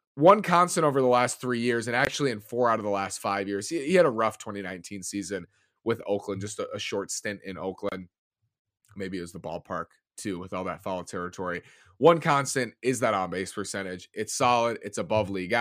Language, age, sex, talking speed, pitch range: English, 30-49, male, 210 wpm, 100-125 Hz